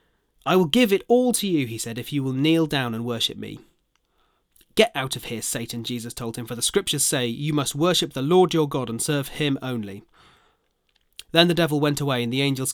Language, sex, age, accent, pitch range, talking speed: English, male, 30-49, British, 120-165 Hz, 225 wpm